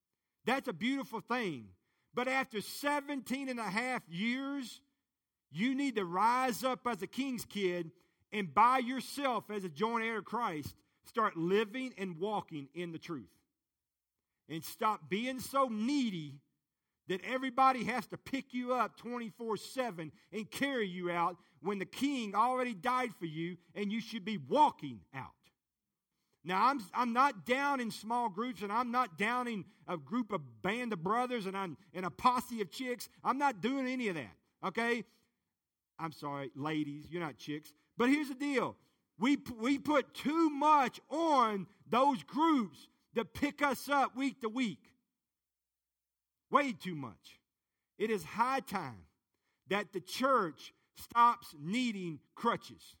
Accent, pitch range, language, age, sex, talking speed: American, 175-255 Hz, English, 50-69, male, 155 wpm